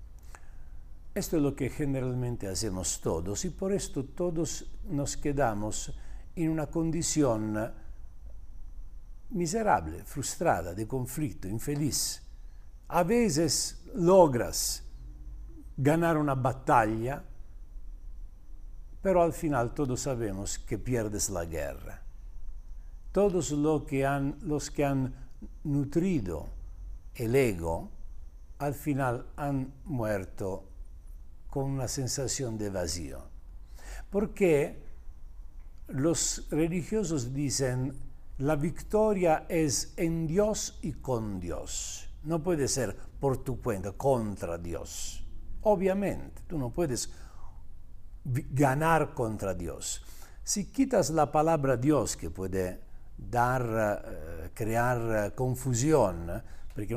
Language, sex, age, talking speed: Spanish, male, 60-79, 95 wpm